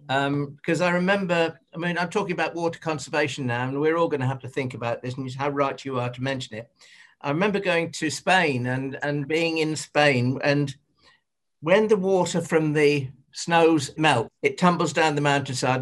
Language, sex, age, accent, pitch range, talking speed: English, male, 50-69, British, 140-175 Hz, 200 wpm